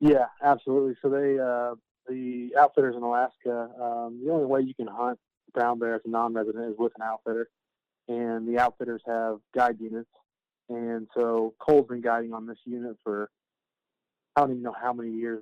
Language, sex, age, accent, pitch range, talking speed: English, male, 20-39, American, 115-125 Hz, 185 wpm